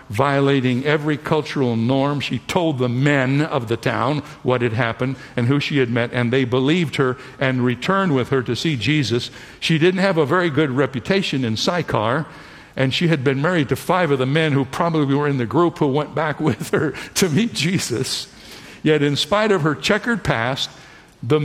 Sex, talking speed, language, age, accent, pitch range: male, 200 wpm, English, 60-79, American, 125-165 Hz